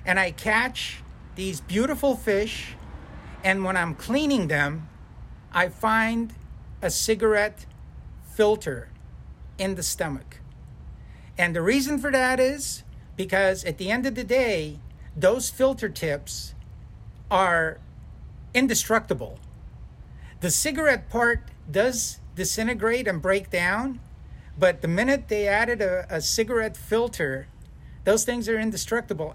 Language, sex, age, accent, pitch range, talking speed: English, male, 50-69, American, 175-230 Hz, 120 wpm